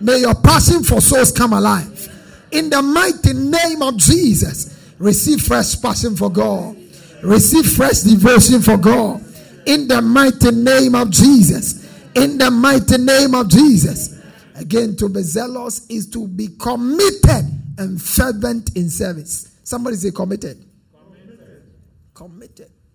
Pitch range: 185-260 Hz